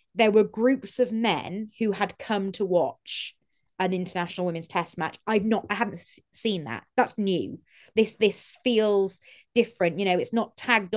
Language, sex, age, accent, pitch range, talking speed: English, female, 20-39, British, 180-220 Hz, 175 wpm